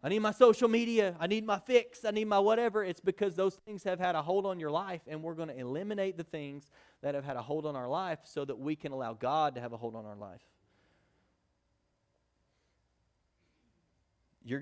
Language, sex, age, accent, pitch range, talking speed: English, male, 30-49, American, 125-165 Hz, 220 wpm